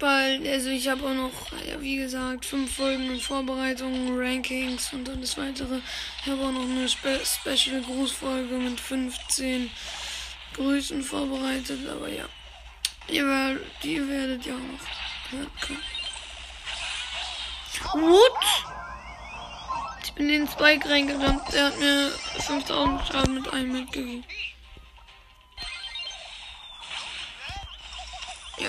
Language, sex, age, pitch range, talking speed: German, female, 10-29, 260-290 Hz, 115 wpm